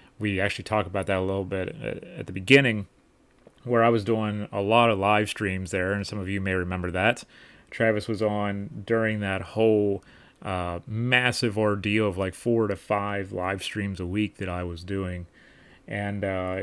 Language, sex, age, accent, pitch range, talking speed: English, male, 30-49, American, 95-110 Hz, 190 wpm